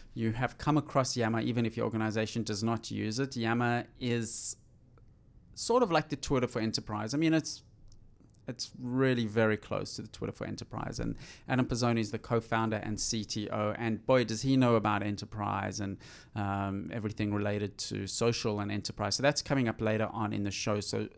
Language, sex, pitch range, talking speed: English, male, 110-130 Hz, 190 wpm